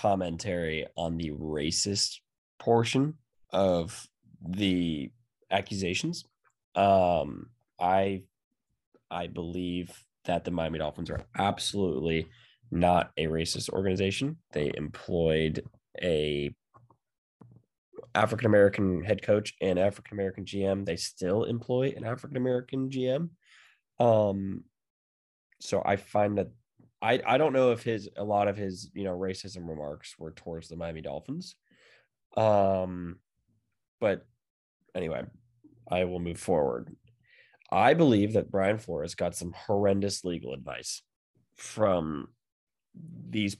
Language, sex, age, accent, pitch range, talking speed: English, male, 10-29, American, 85-110 Hz, 110 wpm